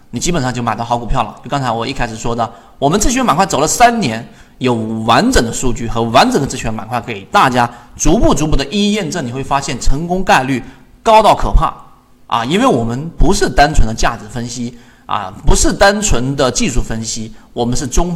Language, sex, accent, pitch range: Chinese, male, native, 115-160 Hz